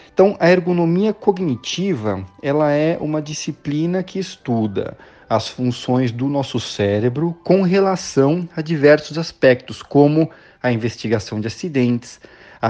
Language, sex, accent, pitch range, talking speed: Portuguese, male, Brazilian, 125-170 Hz, 125 wpm